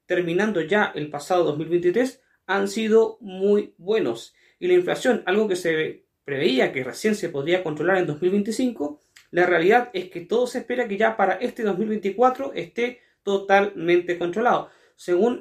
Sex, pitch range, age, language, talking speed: male, 175-235 Hz, 30-49, Spanish, 150 wpm